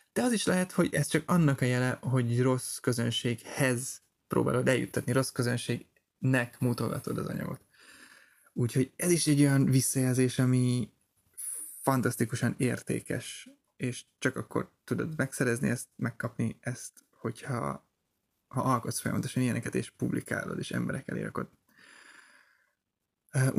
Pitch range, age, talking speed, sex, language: 120-145 Hz, 20-39, 120 wpm, male, Hungarian